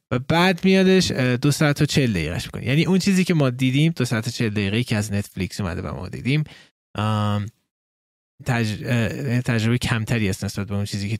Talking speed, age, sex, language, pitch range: 195 wpm, 20-39, male, Persian, 115-155 Hz